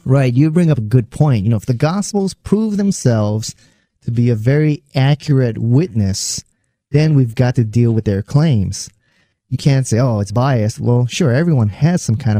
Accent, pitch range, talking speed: American, 115-155 Hz, 195 wpm